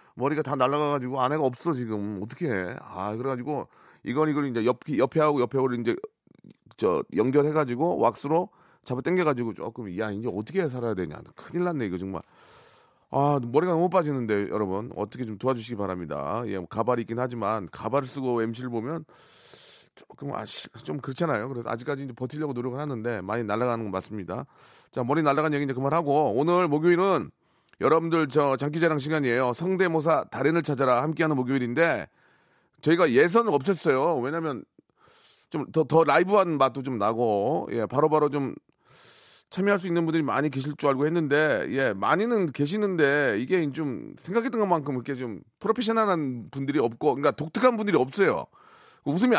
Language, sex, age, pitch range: Korean, male, 30-49, 125-170 Hz